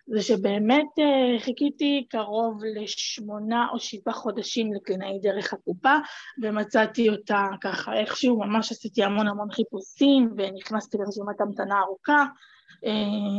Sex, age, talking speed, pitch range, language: female, 20-39, 110 wpm, 210-255 Hz, Hebrew